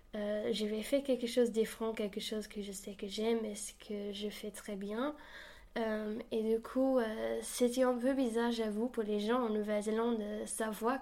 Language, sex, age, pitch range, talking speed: French, female, 10-29, 210-240 Hz, 205 wpm